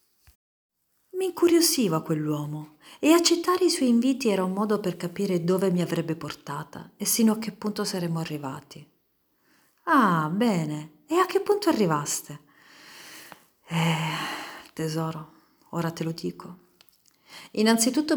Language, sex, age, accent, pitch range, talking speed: Italian, female, 50-69, native, 155-195 Hz, 125 wpm